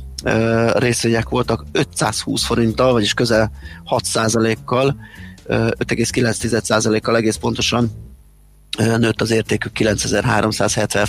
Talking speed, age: 75 wpm, 30-49